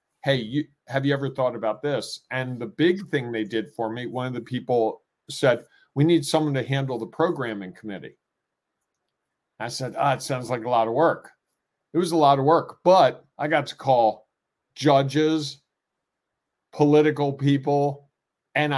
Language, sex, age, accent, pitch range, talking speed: English, male, 50-69, American, 120-145 Hz, 170 wpm